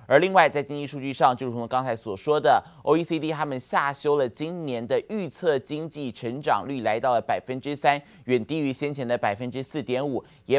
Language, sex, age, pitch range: Chinese, male, 20-39, 125-155 Hz